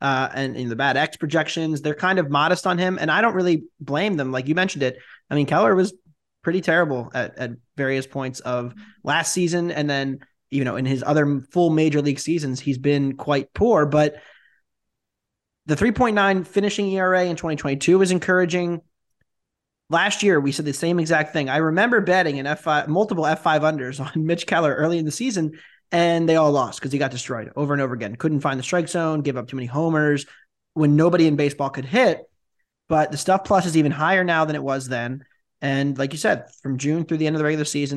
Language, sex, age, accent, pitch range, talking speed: English, male, 20-39, American, 140-165 Hz, 215 wpm